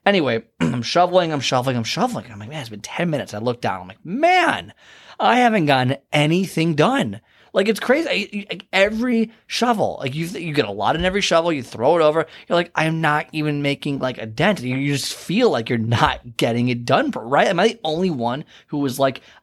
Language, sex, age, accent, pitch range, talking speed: English, male, 30-49, American, 120-165 Hz, 220 wpm